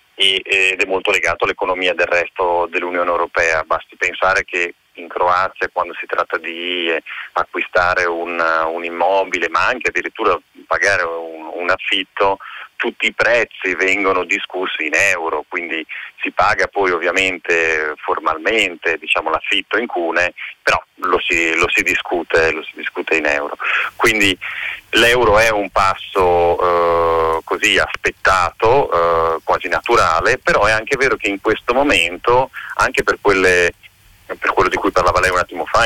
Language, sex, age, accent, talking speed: Italian, male, 30-49, native, 145 wpm